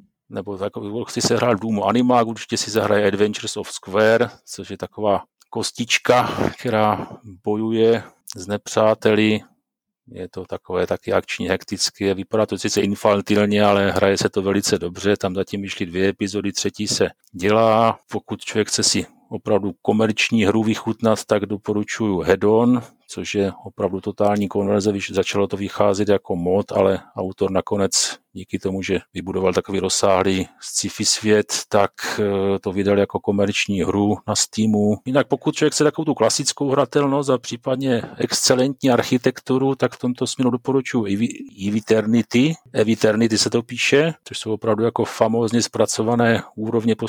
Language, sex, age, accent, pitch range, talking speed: Czech, male, 40-59, native, 100-120 Hz, 150 wpm